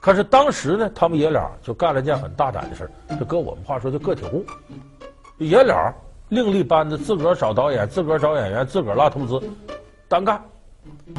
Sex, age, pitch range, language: male, 50-69, 130-190 Hz, Chinese